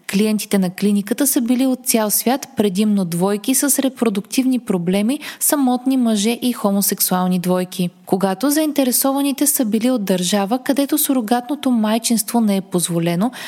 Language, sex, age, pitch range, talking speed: Bulgarian, female, 20-39, 195-255 Hz, 135 wpm